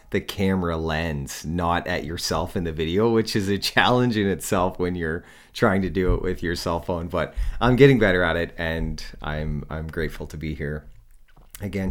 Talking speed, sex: 195 wpm, male